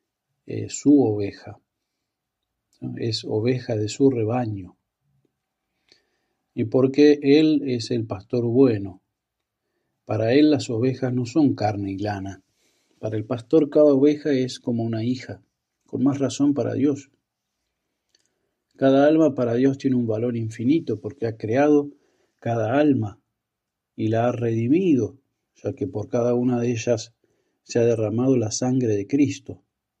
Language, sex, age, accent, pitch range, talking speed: Spanish, male, 40-59, Argentinian, 110-135 Hz, 140 wpm